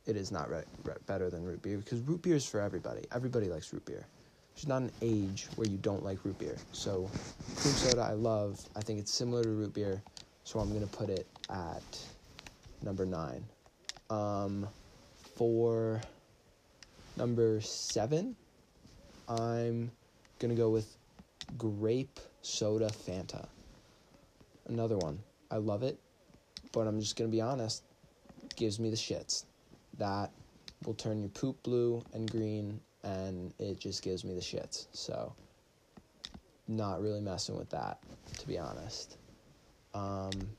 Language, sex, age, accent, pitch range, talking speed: English, male, 20-39, American, 100-115 Hz, 155 wpm